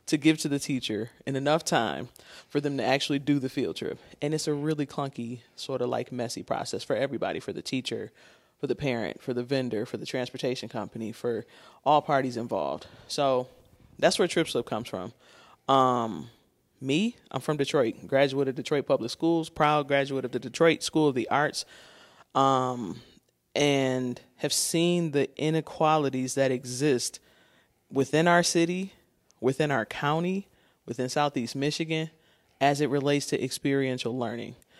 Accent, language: American, English